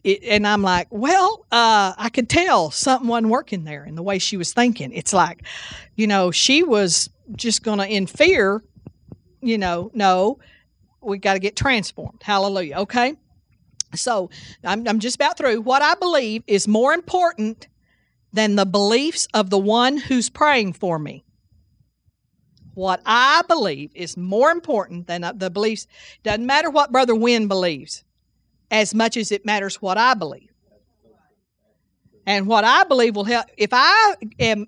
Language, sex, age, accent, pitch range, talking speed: English, female, 50-69, American, 195-255 Hz, 165 wpm